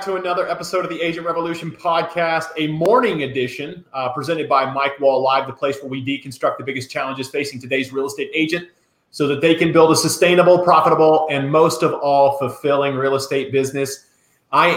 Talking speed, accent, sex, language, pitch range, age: 190 wpm, American, male, English, 140-170 Hz, 30-49